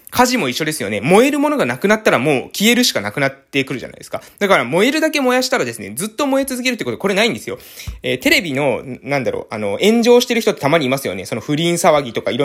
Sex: male